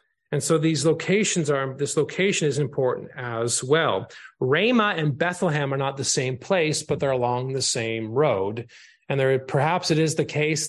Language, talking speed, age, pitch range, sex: English, 180 wpm, 30-49, 130-155 Hz, male